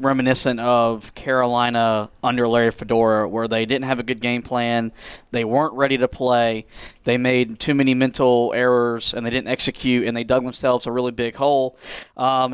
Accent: American